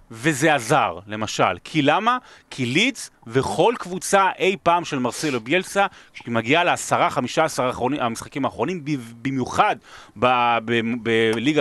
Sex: male